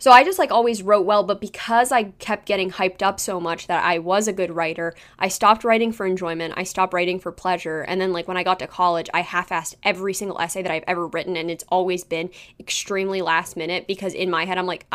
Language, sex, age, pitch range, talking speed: English, female, 10-29, 175-215 Hz, 250 wpm